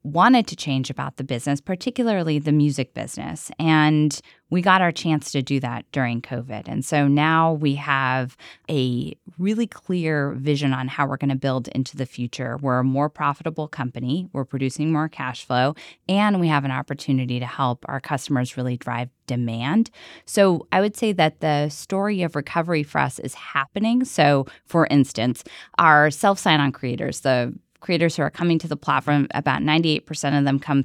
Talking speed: 180 wpm